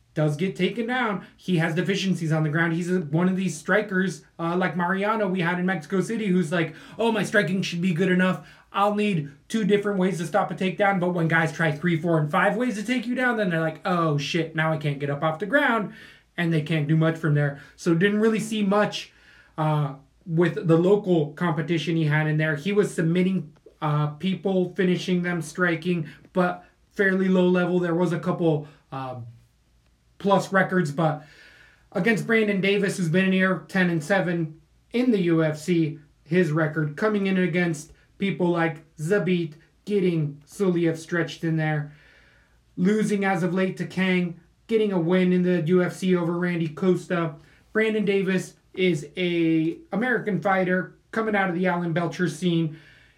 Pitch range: 165-195 Hz